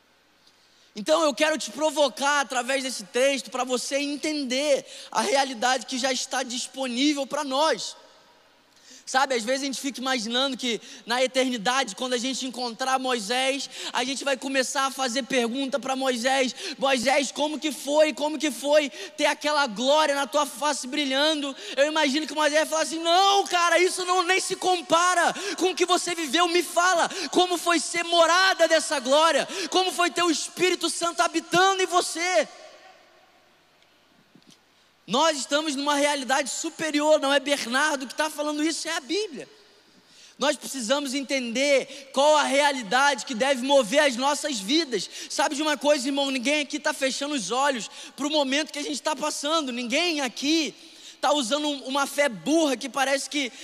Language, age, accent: Portuguese, 20-39, Brazilian